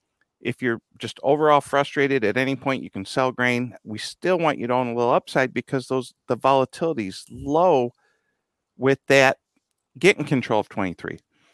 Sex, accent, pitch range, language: male, American, 110-135 Hz, English